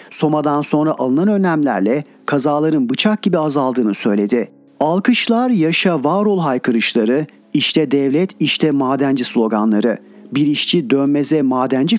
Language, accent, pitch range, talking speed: Turkish, native, 140-180 Hz, 115 wpm